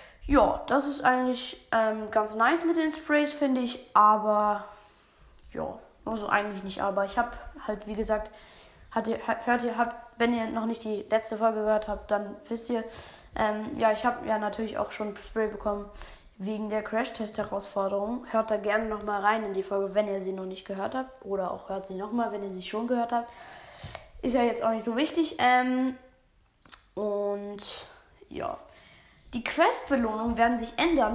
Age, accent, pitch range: 20-39, German, 210-250 Hz